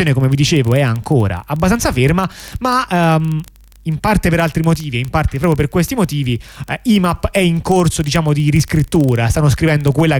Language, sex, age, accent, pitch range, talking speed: Italian, male, 30-49, native, 130-170 Hz, 195 wpm